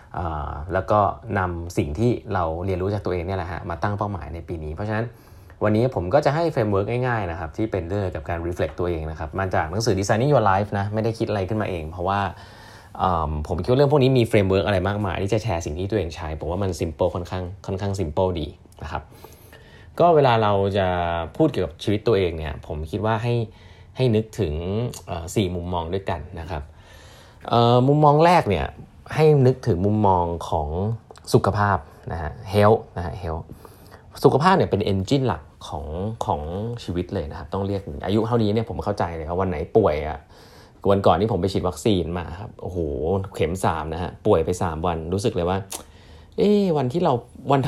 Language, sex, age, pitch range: Thai, male, 20-39, 90-110 Hz